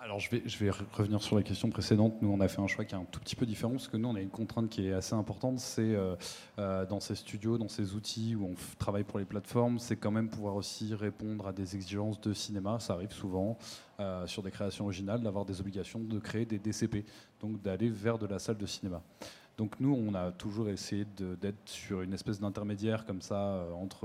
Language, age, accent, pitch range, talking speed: French, 20-39, French, 95-110 Hz, 250 wpm